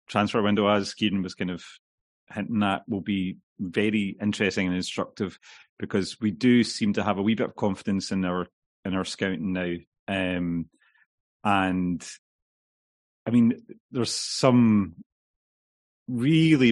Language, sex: English, male